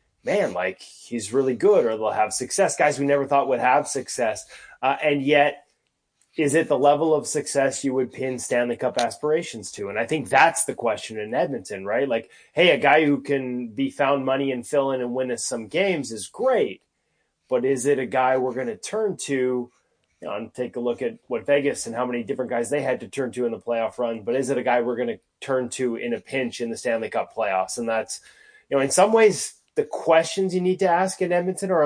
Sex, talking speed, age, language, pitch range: male, 235 wpm, 20-39, English, 125-155 Hz